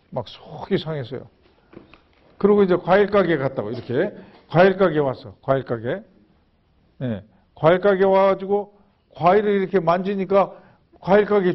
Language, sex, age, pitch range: Korean, male, 50-69, 150-210 Hz